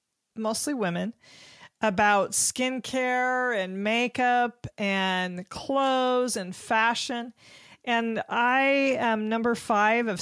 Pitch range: 195-240 Hz